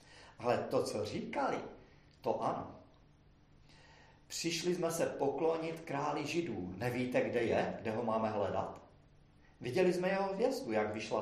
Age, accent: 40-59, native